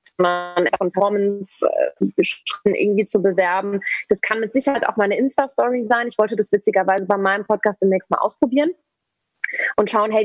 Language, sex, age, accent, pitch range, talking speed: German, female, 20-39, German, 190-220 Hz, 160 wpm